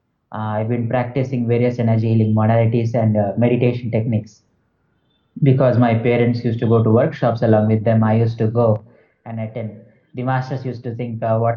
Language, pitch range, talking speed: English, 110-125 Hz, 185 wpm